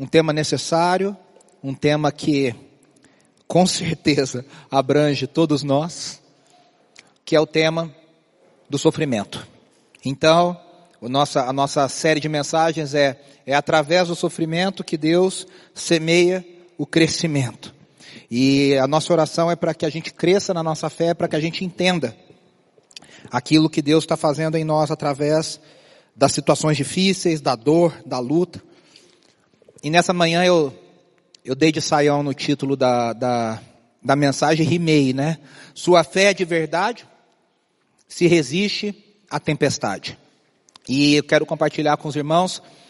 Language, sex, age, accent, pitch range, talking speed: Portuguese, male, 40-59, Brazilian, 145-175 Hz, 135 wpm